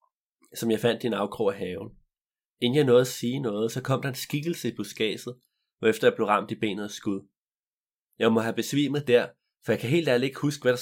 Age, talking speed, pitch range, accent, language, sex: 30-49, 240 wpm, 110-135 Hz, native, Danish, male